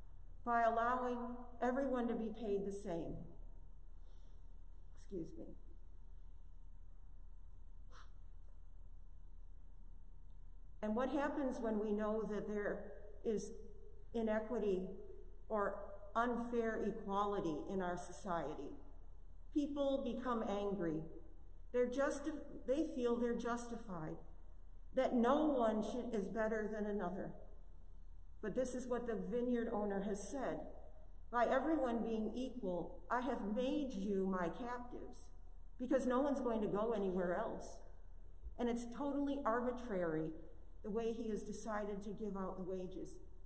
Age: 50-69